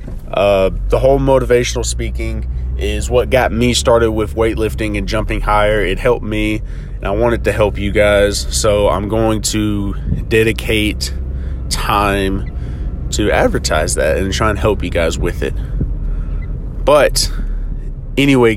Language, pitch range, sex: English, 90-120 Hz, male